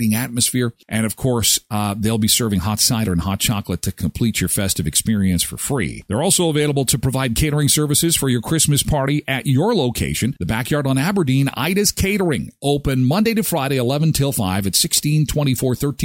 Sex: male